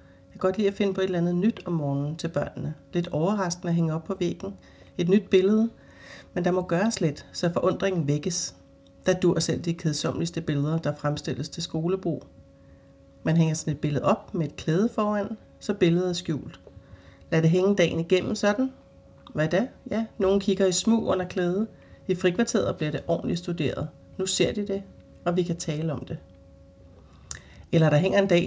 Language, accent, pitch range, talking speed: English, Danish, 160-190 Hz, 190 wpm